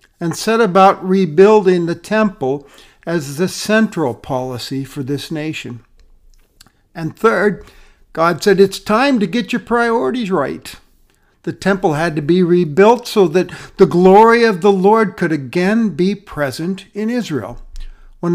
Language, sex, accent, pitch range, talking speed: English, male, American, 145-200 Hz, 145 wpm